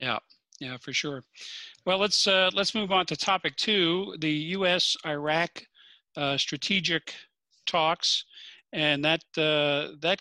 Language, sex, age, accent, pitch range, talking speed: English, male, 50-69, American, 135-160 Hz, 130 wpm